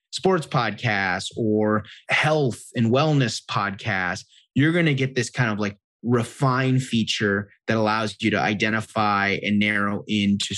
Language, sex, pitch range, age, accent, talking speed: English, male, 100-135 Hz, 30-49, American, 140 wpm